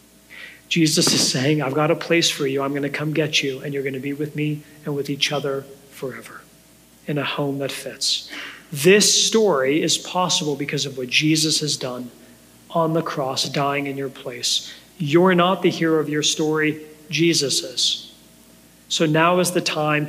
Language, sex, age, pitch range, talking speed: English, male, 40-59, 140-170 Hz, 190 wpm